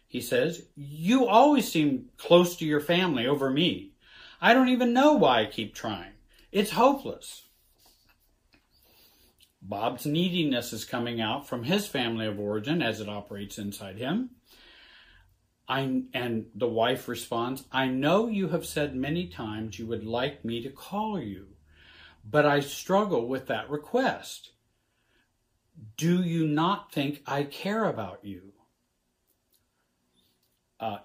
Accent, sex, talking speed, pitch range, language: American, male, 135 wpm, 115-180 Hz, English